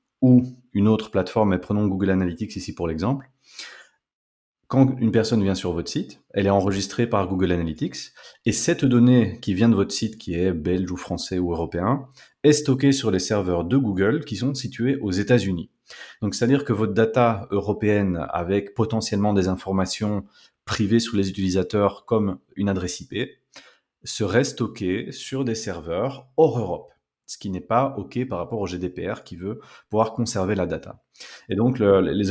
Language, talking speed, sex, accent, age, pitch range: French, 180 wpm, male, French, 30-49, 95-115 Hz